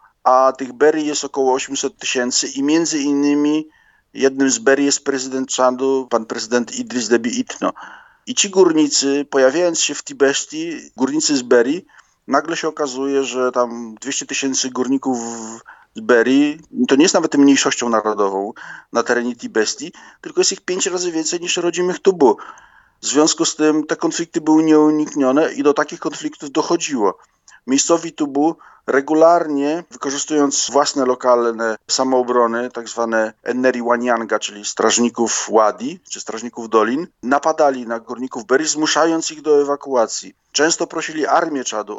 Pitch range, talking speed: 125-155 Hz, 145 wpm